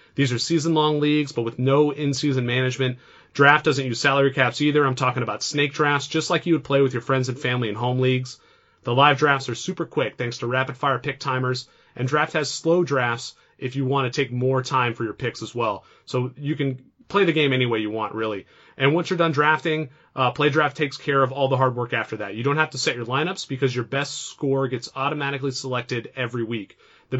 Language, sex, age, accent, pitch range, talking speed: English, male, 30-49, American, 125-145 Hz, 235 wpm